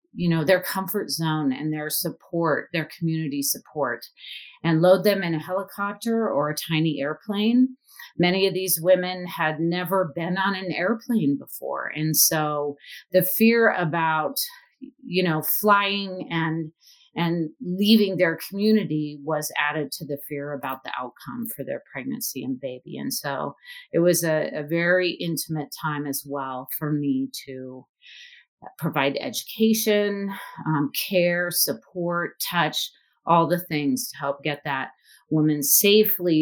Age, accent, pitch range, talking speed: 40-59, American, 150-195 Hz, 145 wpm